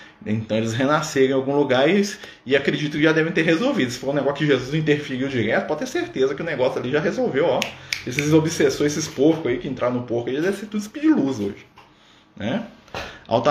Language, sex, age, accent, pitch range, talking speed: Portuguese, male, 20-39, Brazilian, 120-160 Hz, 230 wpm